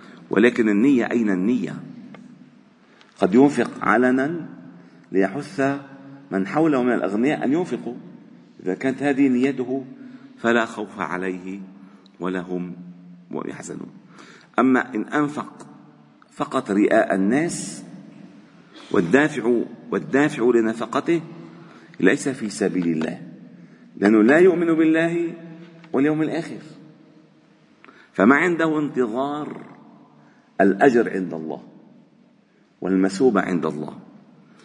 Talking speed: 90 wpm